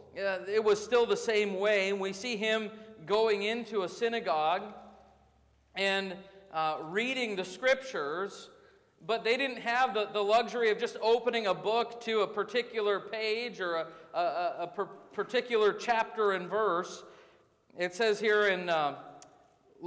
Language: English